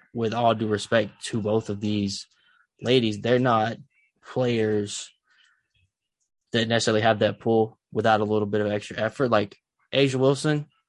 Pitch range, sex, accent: 105-115 Hz, male, American